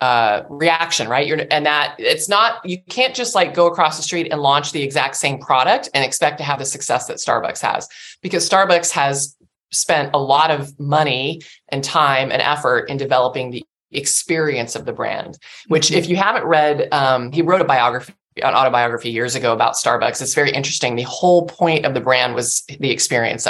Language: English